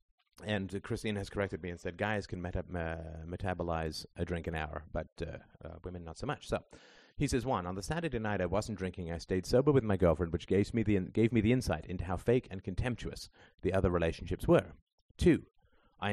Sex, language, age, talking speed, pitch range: male, English, 30-49, 225 wpm, 90-110 Hz